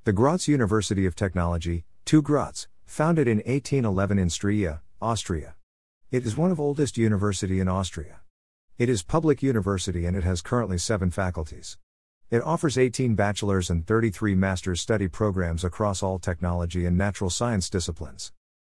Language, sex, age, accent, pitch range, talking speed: English, male, 50-69, American, 85-110 Hz, 150 wpm